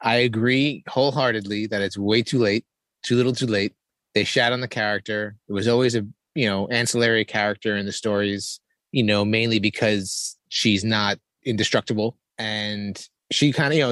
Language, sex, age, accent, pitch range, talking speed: English, male, 30-49, American, 105-135 Hz, 170 wpm